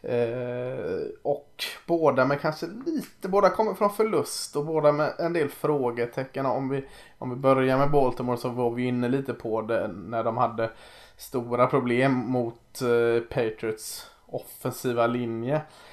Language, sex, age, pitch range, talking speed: Swedish, male, 20-39, 115-135 Hz, 150 wpm